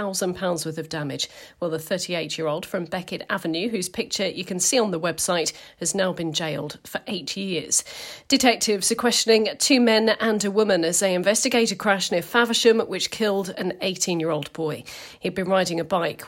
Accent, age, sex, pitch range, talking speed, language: British, 40-59, female, 170-210 Hz, 185 wpm, English